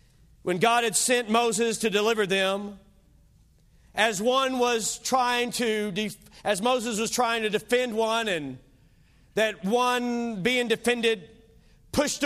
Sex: male